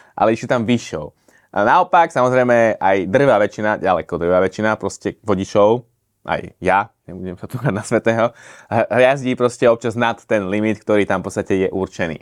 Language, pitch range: Slovak, 100-120 Hz